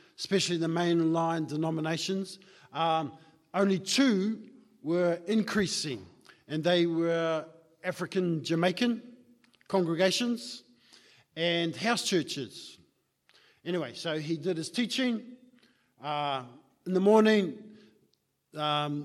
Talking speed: 90 wpm